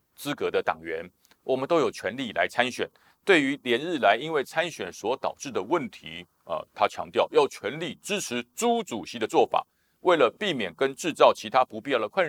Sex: male